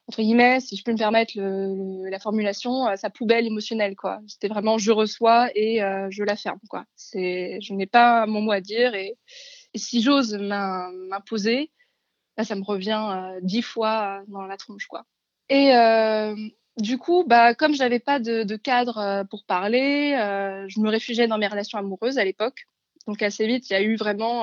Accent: French